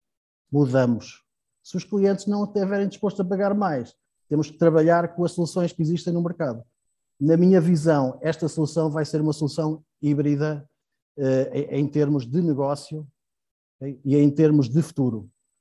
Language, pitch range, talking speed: Portuguese, 135-160 Hz, 160 wpm